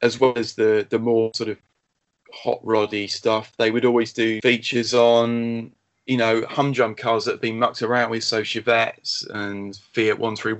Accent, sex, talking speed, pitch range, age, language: British, male, 170 wpm, 110-120 Hz, 20-39, English